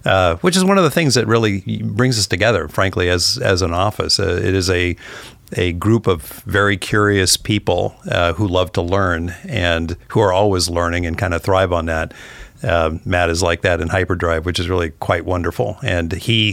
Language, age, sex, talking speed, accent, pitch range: English, 50-69, male, 205 wpm, American, 90-110 Hz